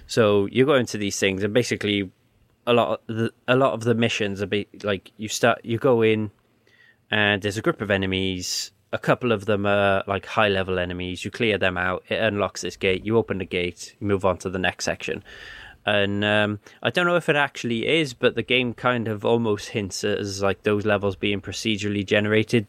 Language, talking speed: English, 215 wpm